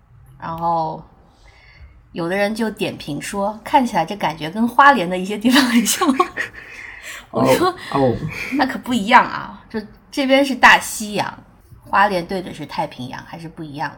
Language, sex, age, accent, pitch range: Chinese, female, 20-39, native, 150-205 Hz